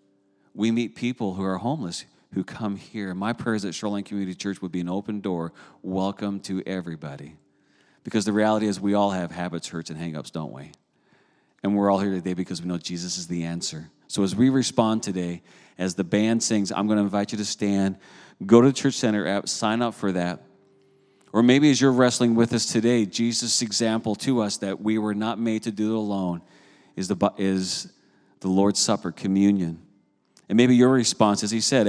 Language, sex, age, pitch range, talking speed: English, male, 40-59, 100-125 Hz, 205 wpm